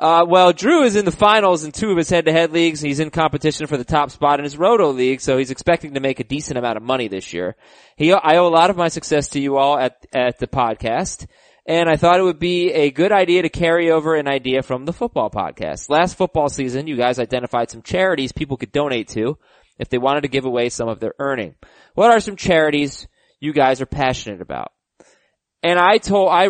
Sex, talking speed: male, 235 wpm